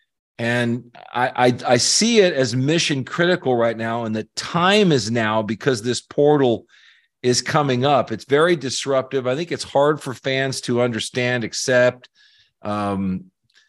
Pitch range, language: 110-135 Hz, English